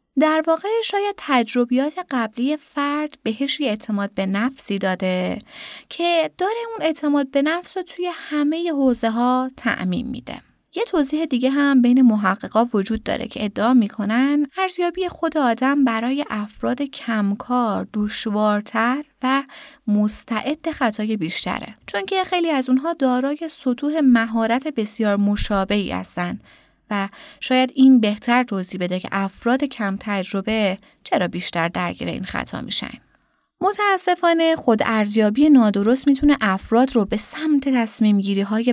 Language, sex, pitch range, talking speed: Persian, female, 215-290 Hz, 130 wpm